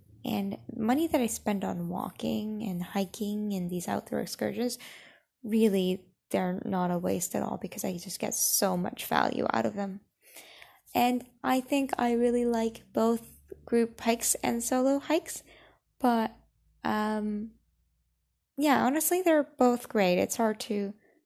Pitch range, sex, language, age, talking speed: 195-235 Hz, female, English, 10-29, 145 wpm